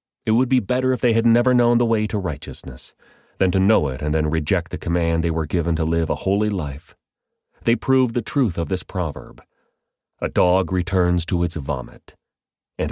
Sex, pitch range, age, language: male, 80-110 Hz, 30-49, English